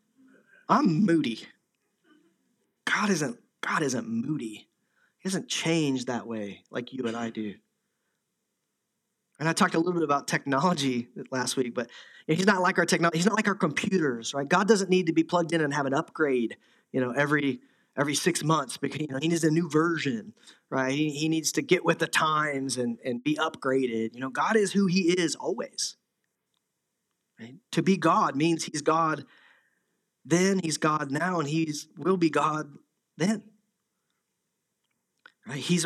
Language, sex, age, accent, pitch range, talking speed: English, male, 30-49, American, 140-185 Hz, 175 wpm